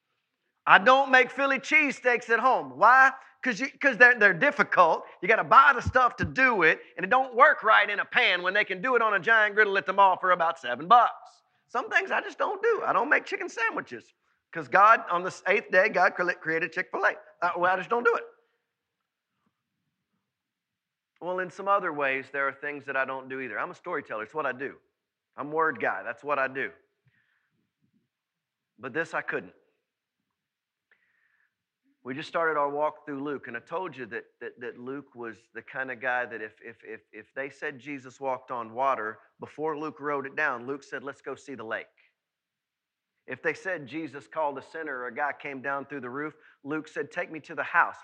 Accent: American